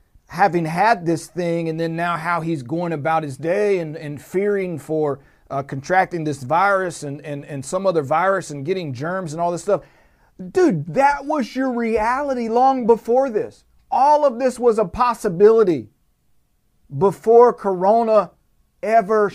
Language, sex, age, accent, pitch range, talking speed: English, male, 40-59, American, 175-235 Hz, 160 wpm